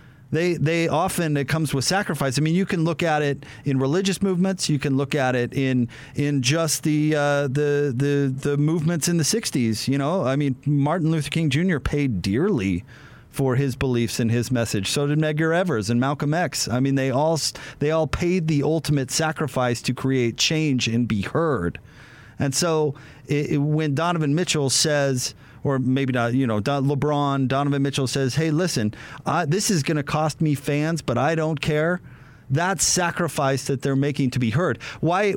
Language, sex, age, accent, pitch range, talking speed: English, male, 40-59, American, 135-160 Hz, 190 wpm